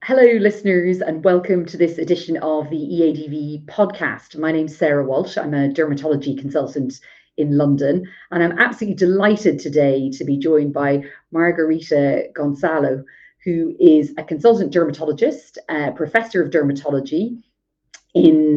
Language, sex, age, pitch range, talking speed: English, female, 40-59, 150-195 Hz, 140 wpm